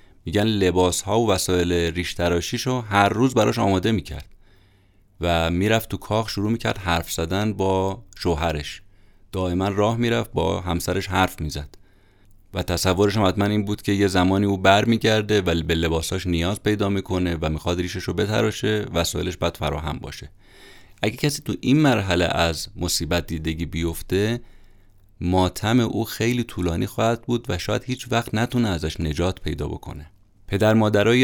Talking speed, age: 155 wpm, 30-49